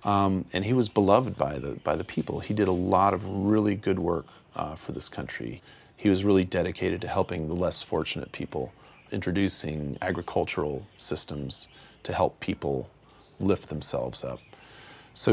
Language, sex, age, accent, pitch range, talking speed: English, male, 40-59, American, 90-110 Hz, 165 wpm